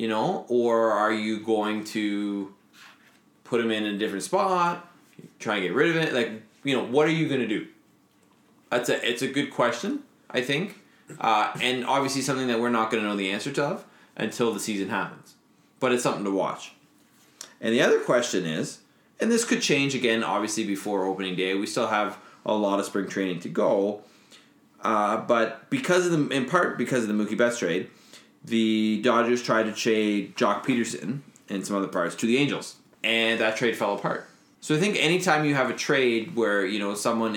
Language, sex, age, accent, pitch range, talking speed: English, male, 20-39, American, 105-130 Hz, 200 wpm